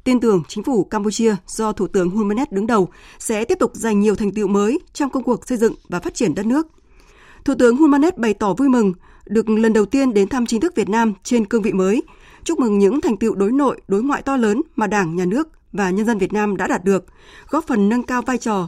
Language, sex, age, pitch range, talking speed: Vietnamese, female, 20-39, 200-255 Hz, 255 wpm